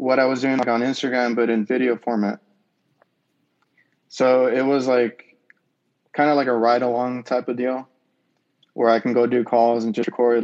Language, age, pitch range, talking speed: English, 20-39, 115-130 Hz, 190 wpm